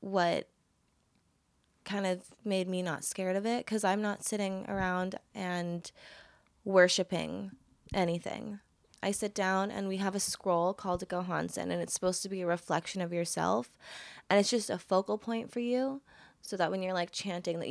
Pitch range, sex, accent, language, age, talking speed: 175-195 Hz, female, American, English, 20-39, 175 wpm